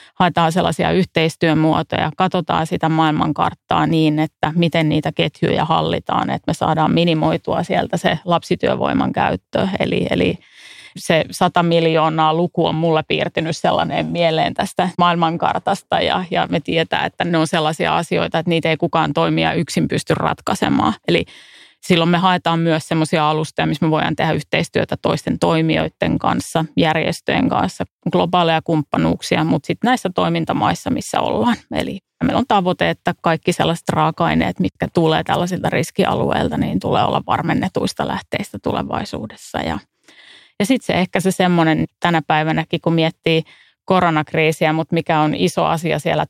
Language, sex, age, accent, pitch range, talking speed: Finnish, female, 30-49, native, 160-180 Hz, 145 wpm